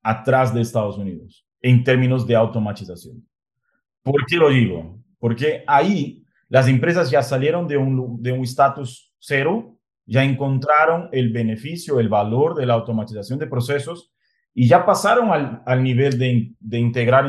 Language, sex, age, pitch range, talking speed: Spanish, male, 30-49, 120-140 Hz, 155 wpm